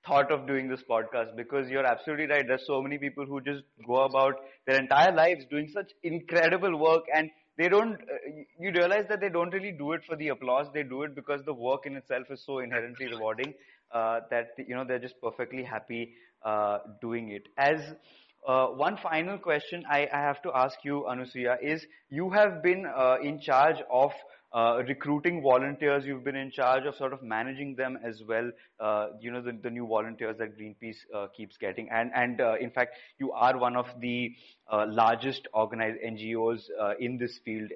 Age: 20-39